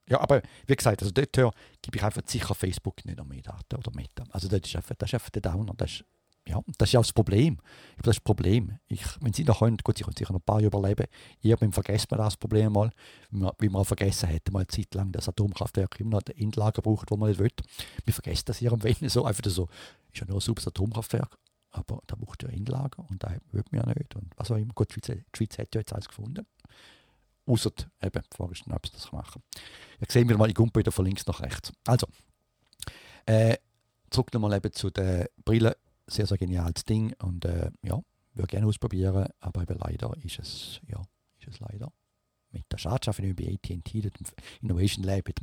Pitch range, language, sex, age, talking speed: 95-115 Hz, English, male, 50-69, 230 wpm